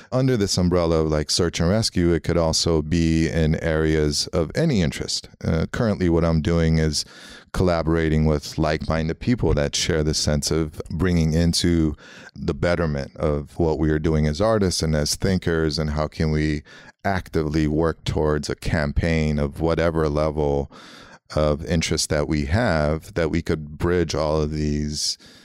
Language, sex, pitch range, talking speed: English, male, 75-85 Hz, 165 wpm